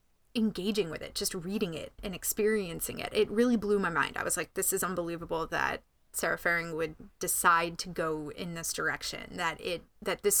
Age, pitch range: 20-39, 165-215 Hz